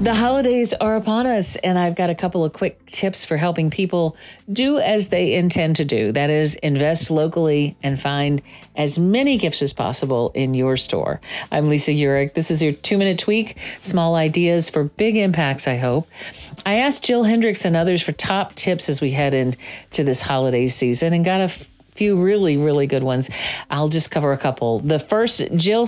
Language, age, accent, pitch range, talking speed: English, 40-59, American, 140-180 Hz, 190 wpm